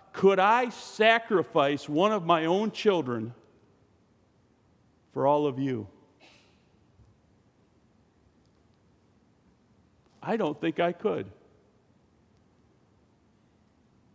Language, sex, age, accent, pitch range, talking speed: English, male, 50-69, American, 115-175 Hz, 70 wpm